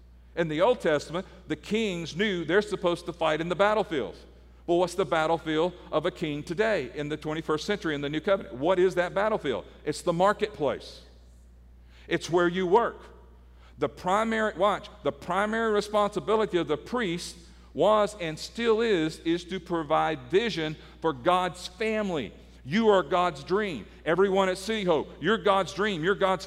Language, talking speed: English, 165 wpm